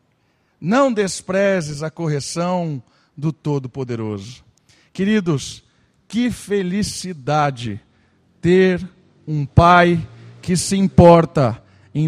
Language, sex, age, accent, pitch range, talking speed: Portuguese, male, 50-69, Brazilian, 135-180 Hz, 80 wpm